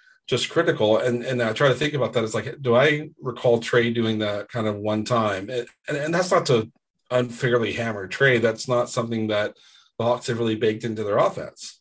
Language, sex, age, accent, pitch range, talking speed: English, male, 40-59, American, 110-130 Hz, 220 wpm